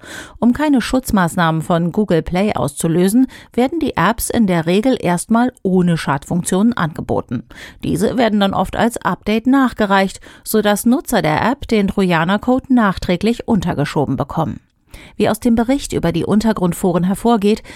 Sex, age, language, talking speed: female, 40-59, German, 140 wpm